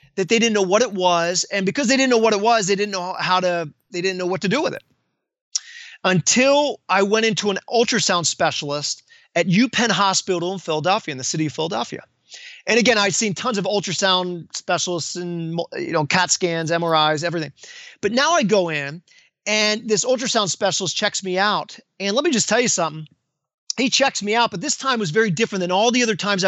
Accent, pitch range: American, 175-235 Hz